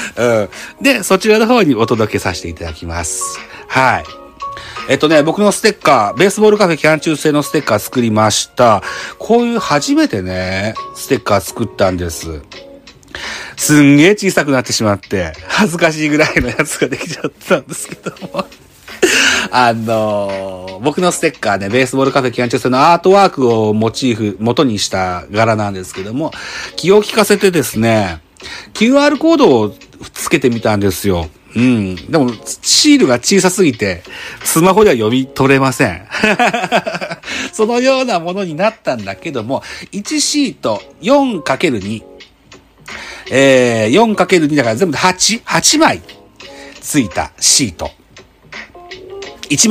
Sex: male